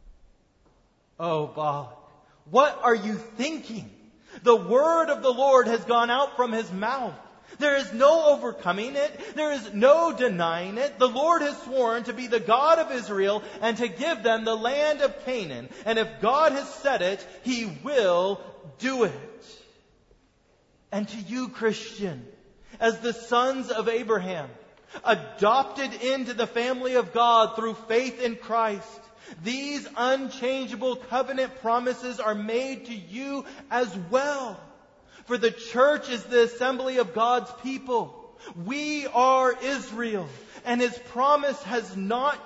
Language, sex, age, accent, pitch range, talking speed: English, male, 30-49, American, 225-265 Hz, 145 wpm